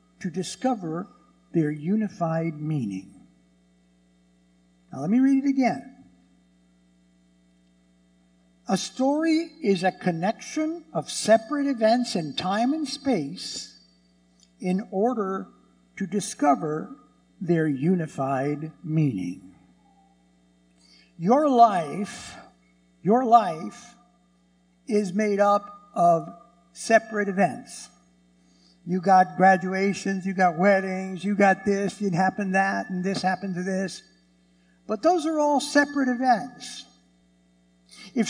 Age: 60-79